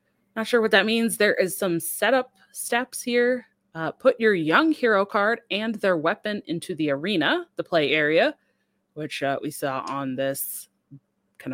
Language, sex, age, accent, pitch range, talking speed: English, female, 30-49, American, 155-225 Hz, 170 wpm